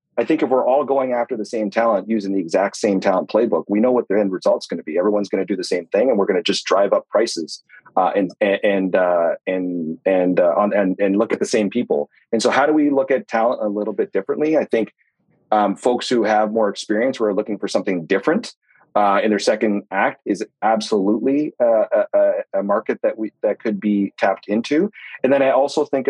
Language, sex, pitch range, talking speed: English, male, 100-120 Hz, 235 wpm